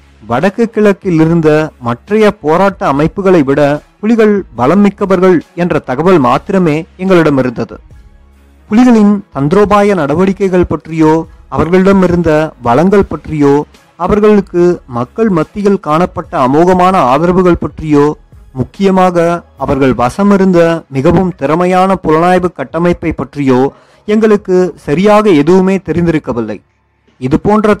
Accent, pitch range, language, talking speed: native, 145-190 Hz, Tamil, 90 wpm